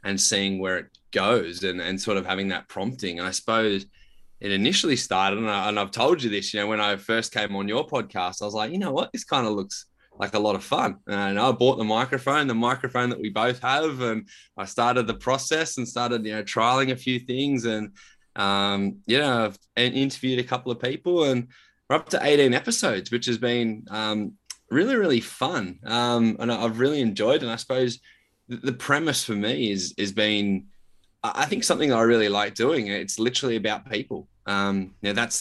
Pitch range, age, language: 100-125 Hz, 20-39, English